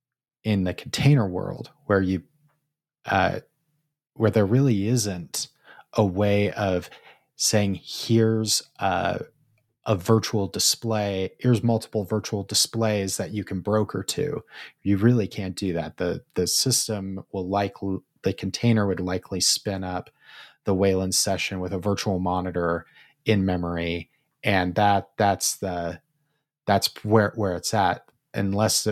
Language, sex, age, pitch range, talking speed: English, male, 30-49, 95-115 Hz, 135 wpm